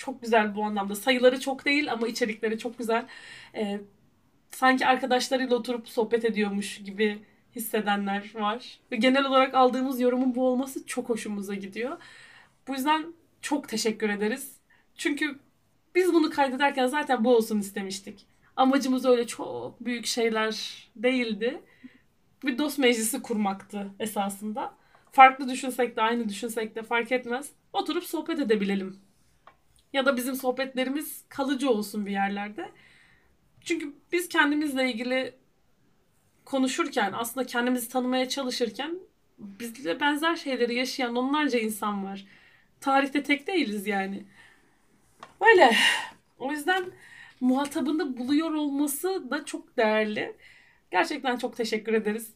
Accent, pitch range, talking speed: native, 225-280 Hz, 120 wpm